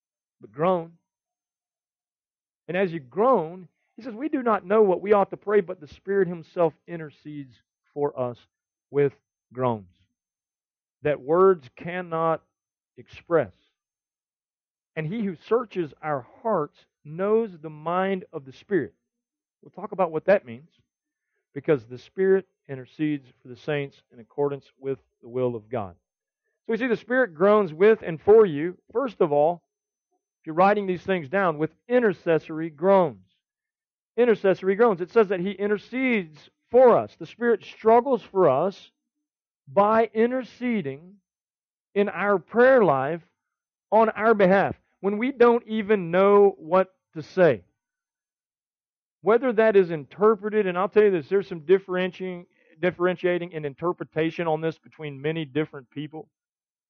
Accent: American